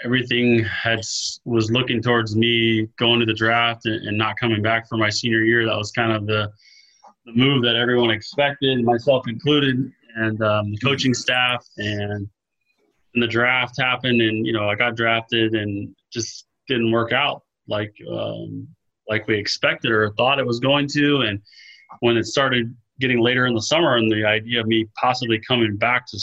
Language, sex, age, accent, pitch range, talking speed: English, male, 20-39, American, 105-120 Hz, 185 wpm